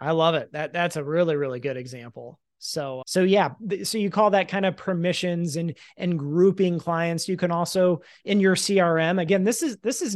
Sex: male